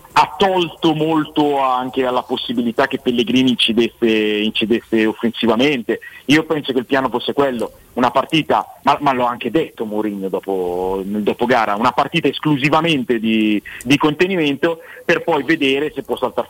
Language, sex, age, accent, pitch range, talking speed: Italian, male, 40-59, native, 115-140 Hz, 150 wpm